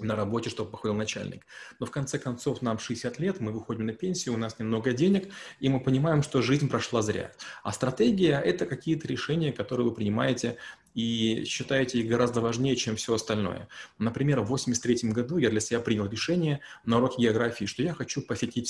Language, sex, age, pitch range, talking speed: Russian, male, 20-39, 110-140 Hz, 195 wpm